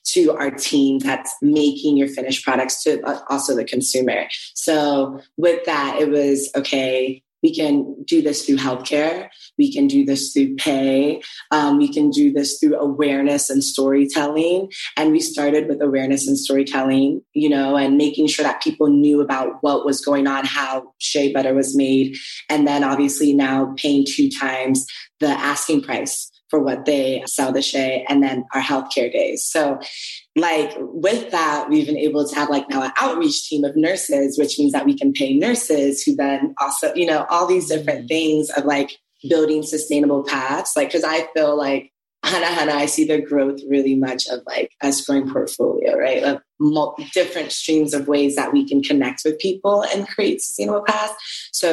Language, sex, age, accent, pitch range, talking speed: English, female, 20-39, American, 140-155 Hz, 185 wpm